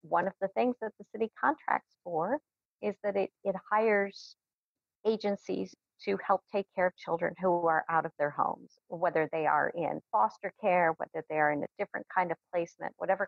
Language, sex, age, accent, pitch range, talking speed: English, female, 40-59, American, 170-205 Hz, 195 wpm